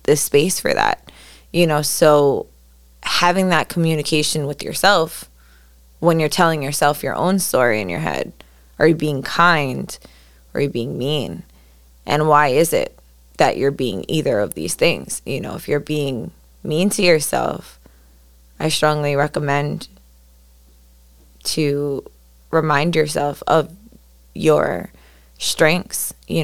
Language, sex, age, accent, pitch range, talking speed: English, female, 20-39, American, 130-160 Hz, 135 wpm